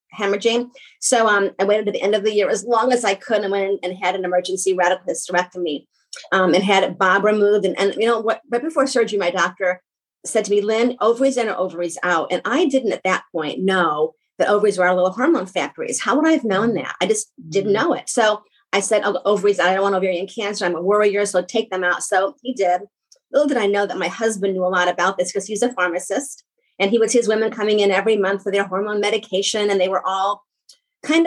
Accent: American